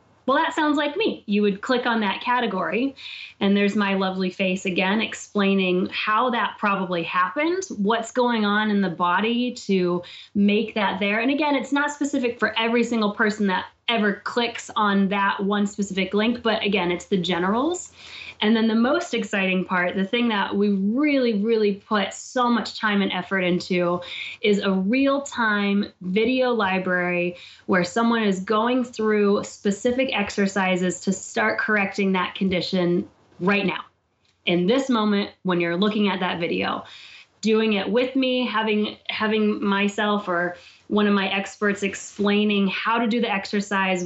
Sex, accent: female, American